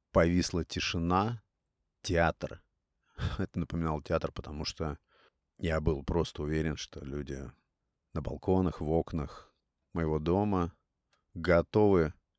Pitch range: 80-95 Hz